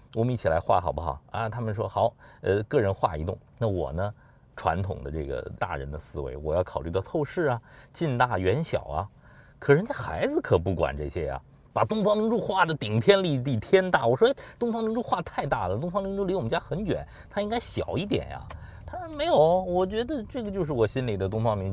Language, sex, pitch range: Chinese, male, 95-150 Hz